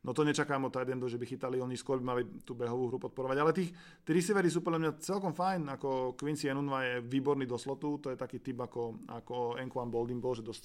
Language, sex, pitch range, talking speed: Slovak, male, 120-135 Hz, 220 wpm